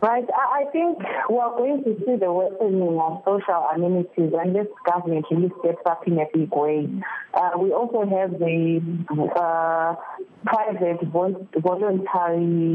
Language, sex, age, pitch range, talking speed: English, female, 30-49, 155-185 Hz, 140 wpm